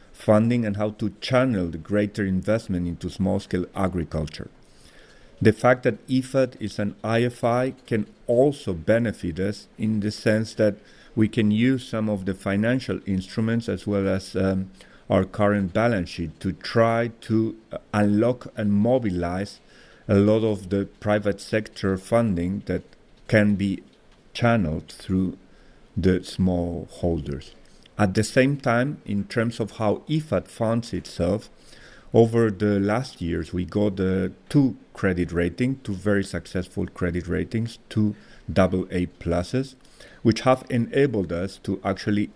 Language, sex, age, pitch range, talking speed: English, male, 50-69, 95-115 Hz, 135 wpm